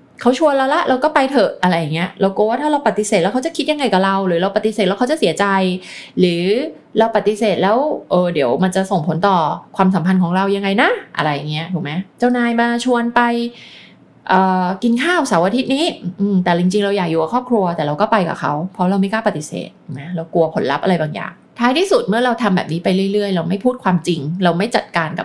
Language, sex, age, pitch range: Thai, female, 20-39, 170-220 Hz